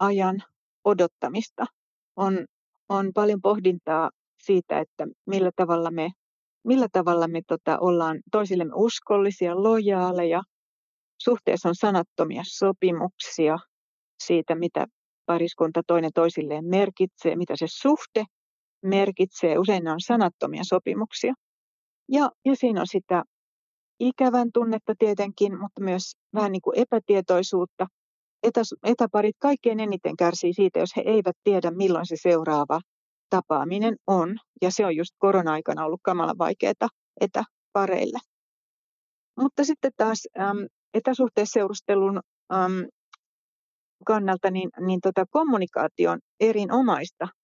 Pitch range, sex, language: 175-215 Hz, female, Finnish